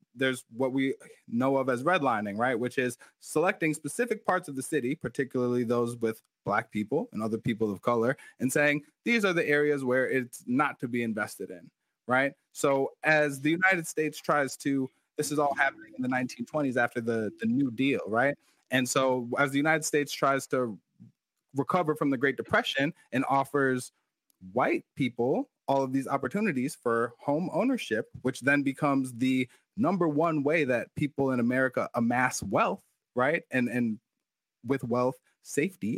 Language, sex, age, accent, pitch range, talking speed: English, male, 20-39, American, 125-150 Hz, 170 wpm